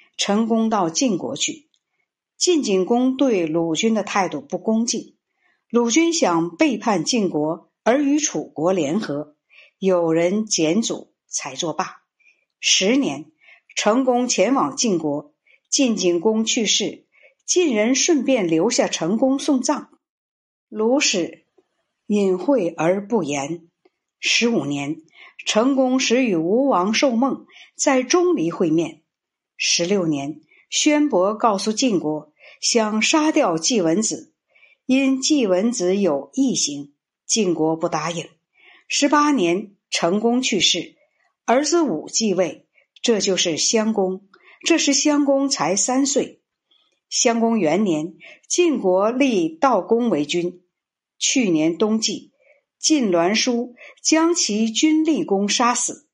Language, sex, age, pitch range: Chinese, female, 60-79, 175-280 Hz